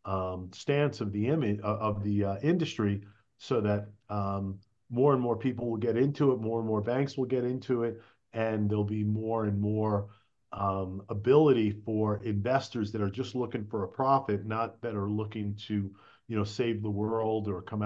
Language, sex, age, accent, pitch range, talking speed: English, male, 40-59, American, 105-125 Hz, 190 wpm